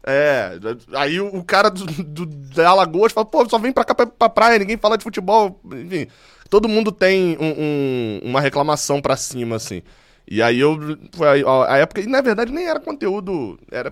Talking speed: 200 wpm